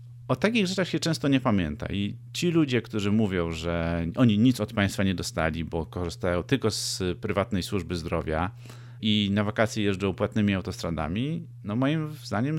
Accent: native